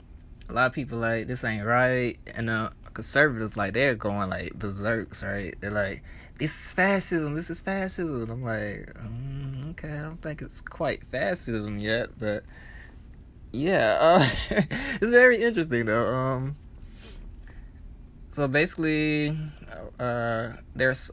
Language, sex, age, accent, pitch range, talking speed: English, male, 20-39, American, 100-125 Hz, 135 wpm